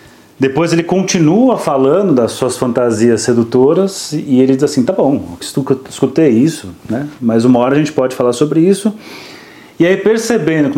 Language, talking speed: Portuguese, 175 wpm